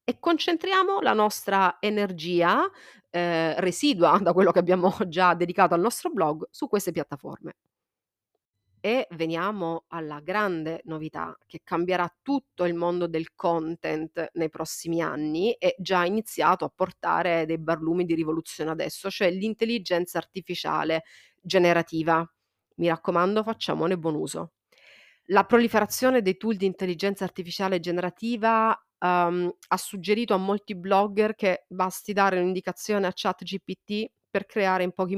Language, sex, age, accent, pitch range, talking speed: Italian, female, 30-49, native, 170-210 Hz, 130 wpm